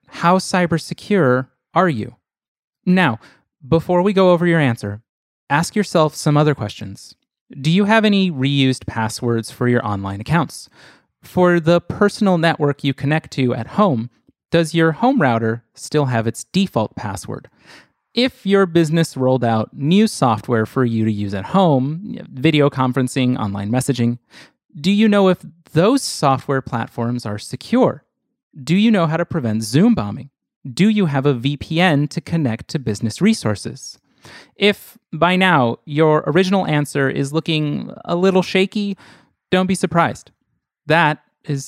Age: 30-49